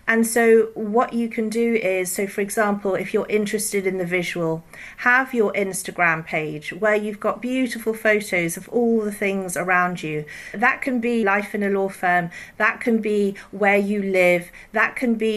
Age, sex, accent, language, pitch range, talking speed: 40-59, female, British, English, 185-225 Hz, 185 wpm